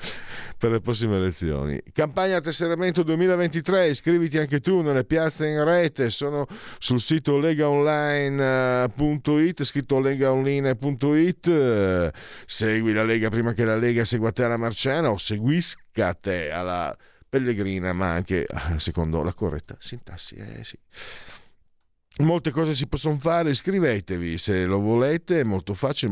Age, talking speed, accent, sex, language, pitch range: 50-69, 130 wpm, native, male, Italian, 90-145 Hz